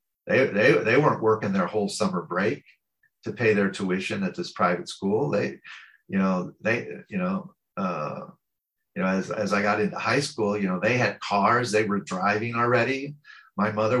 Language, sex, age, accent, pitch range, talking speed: English, male, 50-69, American, 100-160 Hz, 190 wpm